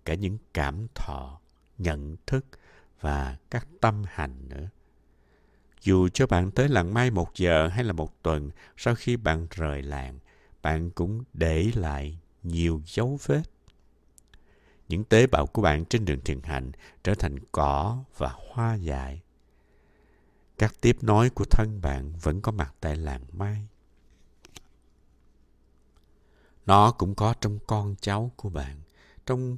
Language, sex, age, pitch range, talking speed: Vietnamese, male, 60-79, 75-115 Hz, 145 wpm